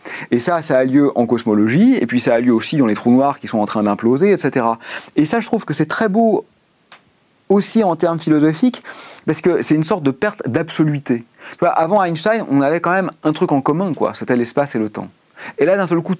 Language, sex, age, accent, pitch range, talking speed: French, male, 40-59, French, 125-170 Hz, 240 wpm